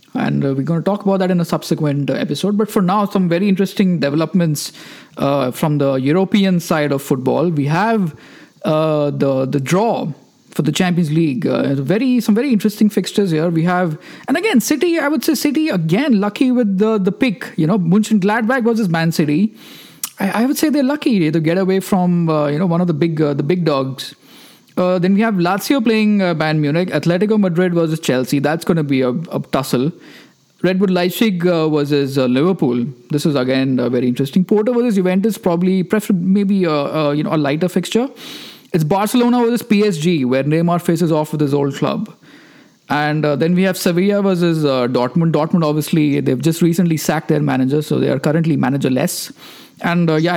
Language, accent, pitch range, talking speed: English, Indian, 150-205 Hz, 195 wpm